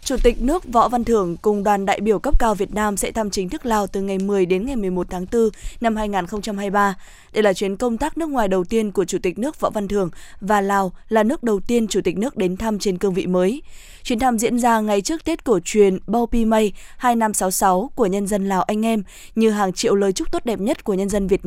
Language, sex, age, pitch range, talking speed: Vietnamese, female, 20-39, 195-235 Hz, 250 wpm